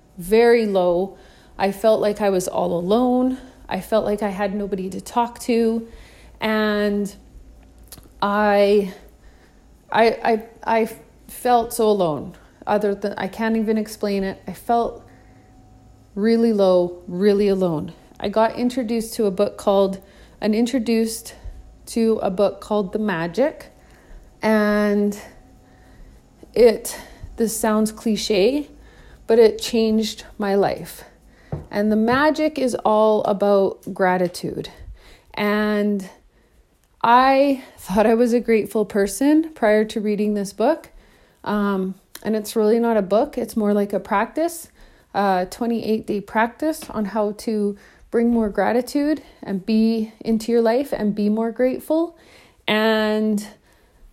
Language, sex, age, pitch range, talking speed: English, female, 30-49, 200-230 Hz, 125 wpm